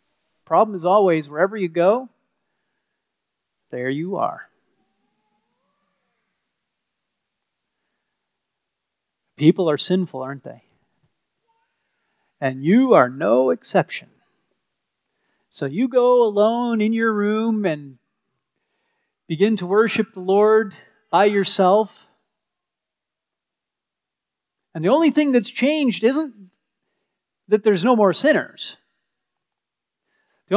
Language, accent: English, American